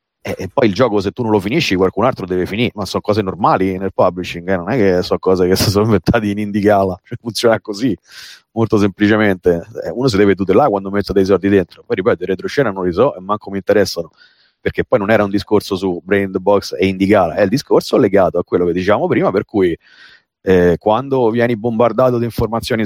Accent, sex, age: native, male, 30-49